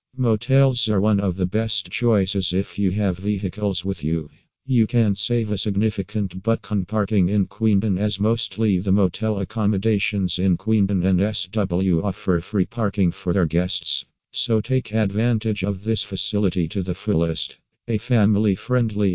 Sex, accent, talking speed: male, American, 155 wpm